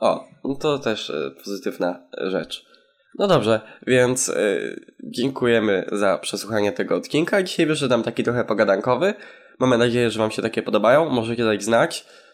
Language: Polish